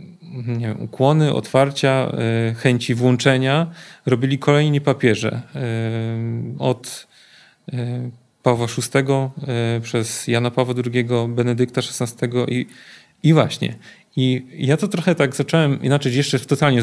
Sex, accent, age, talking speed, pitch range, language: male, Polish, 40-59, 105 wpm, 120-145 Hz, English